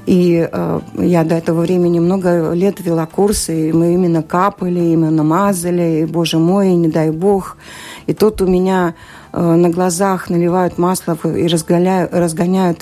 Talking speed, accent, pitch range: 150 wpm, native, 165-185 Hz